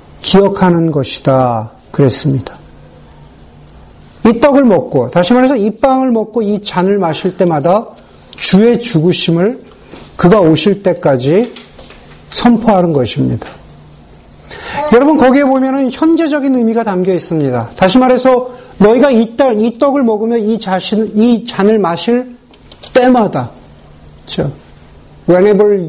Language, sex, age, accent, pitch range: Korean, male, 40-59, native, 145-235 Hz